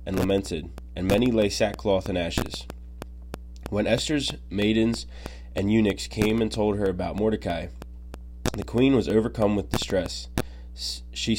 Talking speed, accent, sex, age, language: 135 wpm, American, male, 20-39, English